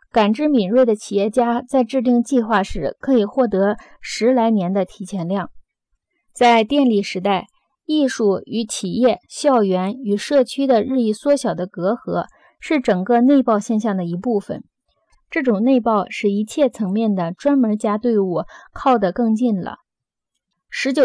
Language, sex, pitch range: Chinese, female, 205-265 Hz